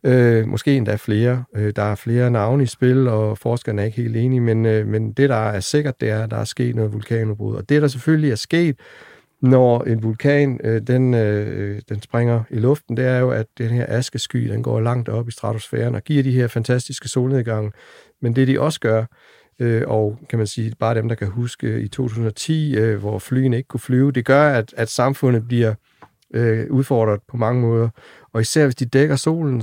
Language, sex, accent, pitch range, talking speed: Danish, male, native, 110-130 Hz, 215 wpm